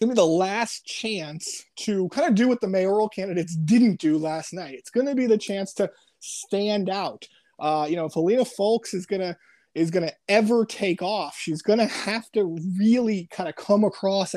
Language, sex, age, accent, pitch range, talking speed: English, male, 20-39, American, 170-215 Hz, 190 wpm